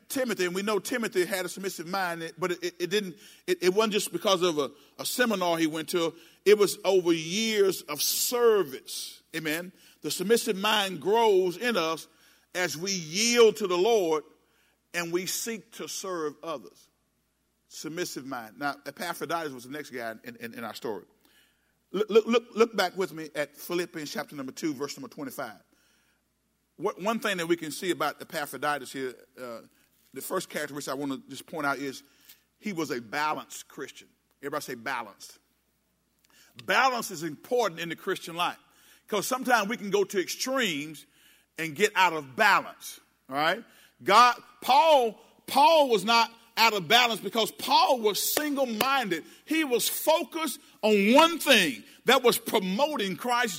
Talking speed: 170 wpm